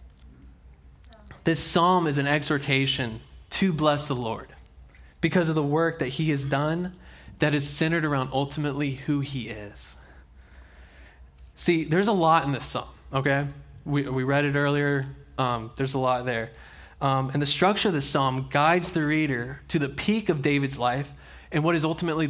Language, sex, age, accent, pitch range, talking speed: English, male, 20-39, American, 120-150 Hz, 170 wpm